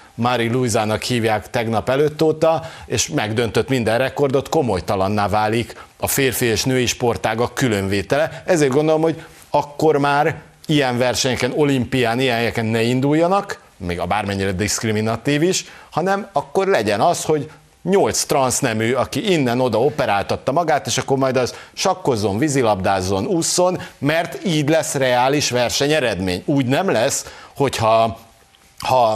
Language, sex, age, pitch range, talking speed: Hungarian, male, 50-69, 100-140 Hz, 130 wpm